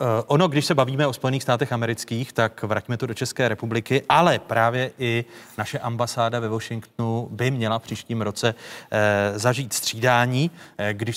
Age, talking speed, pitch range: 30-49, 155 wpm, 115-140 Hz